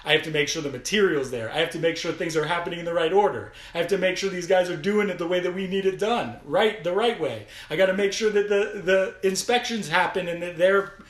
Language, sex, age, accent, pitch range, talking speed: English, male, 30-49, American, 140-195 Hz, 290 wpm